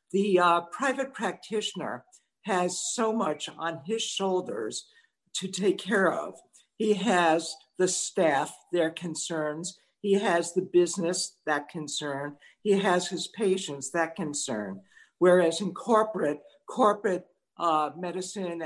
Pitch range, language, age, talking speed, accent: 160-200 Hz, English, 60-79, 120 wpm, American